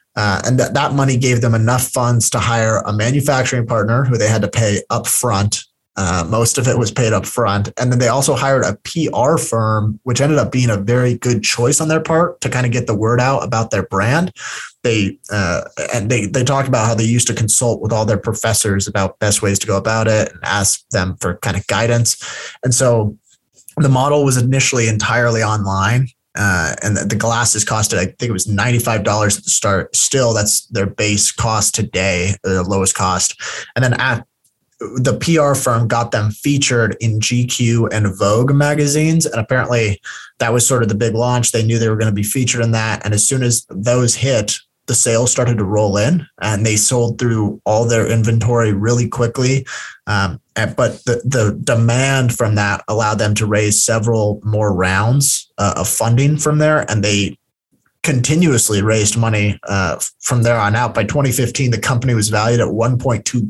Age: 20-39